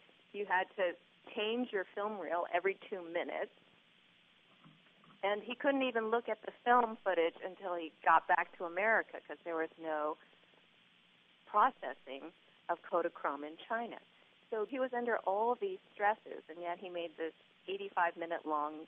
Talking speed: 150 wpm